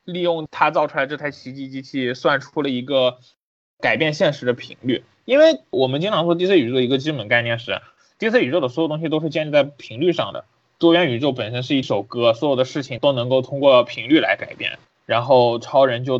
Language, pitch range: Chinese, 125-160 Hz